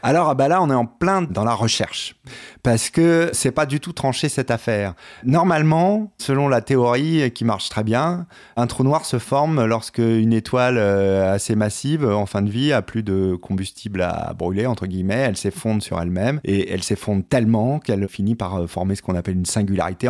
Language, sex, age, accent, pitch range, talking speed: French, male, 30-49, French, 95-135 Hz, 195 wpm